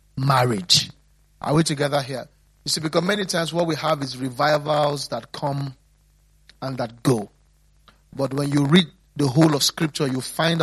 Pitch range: 135-160 Hz